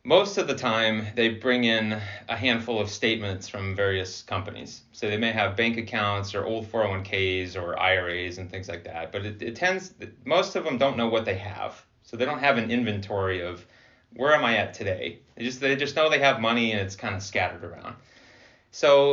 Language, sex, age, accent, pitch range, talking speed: English, male, 30-49, American, 100-125 Hz, 215 wpm